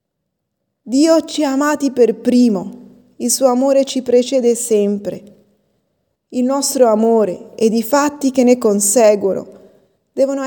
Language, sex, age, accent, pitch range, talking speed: Italian, female, 20-39, native, 210-265 Hz, 125 wpm